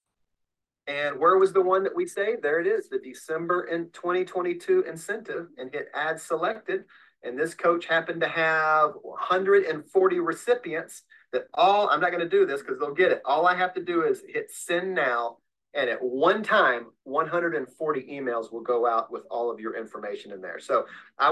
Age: 40-59